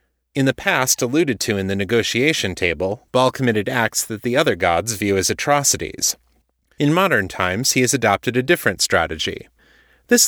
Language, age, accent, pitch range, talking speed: English, 30-49, American, 100-135 Hz, 170 wpm